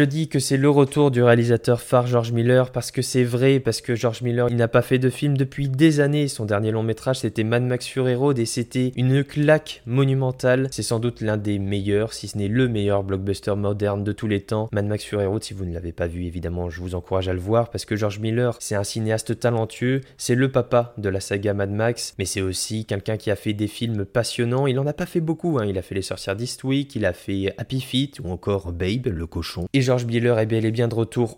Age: 20-39